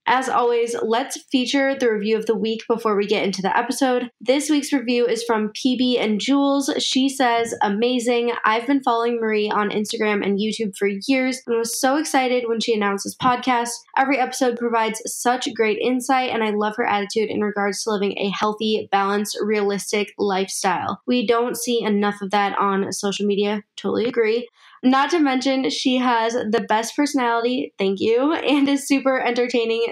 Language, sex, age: English, female, 20-39